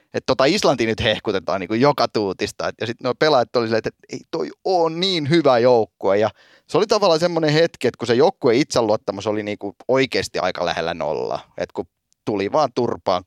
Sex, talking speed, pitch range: male, 215 wpm, 115-150 Hz